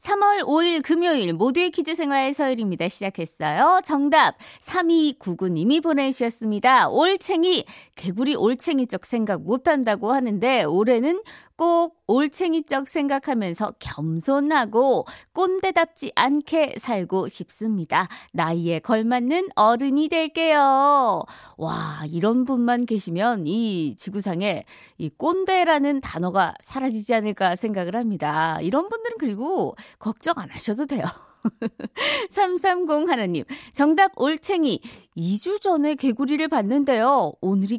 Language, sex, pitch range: Korean, female, 195-310 Hz